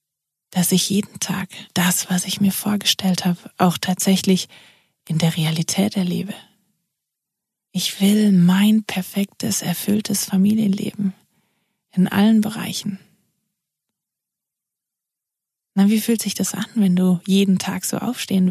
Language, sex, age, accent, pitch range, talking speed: German, female, 20-39, German, 185-215 Hz, 120 wpm